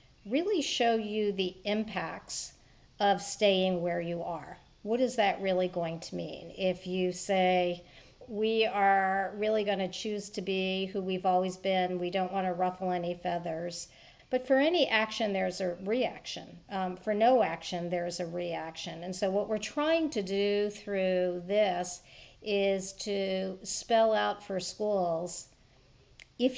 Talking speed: 150 wpm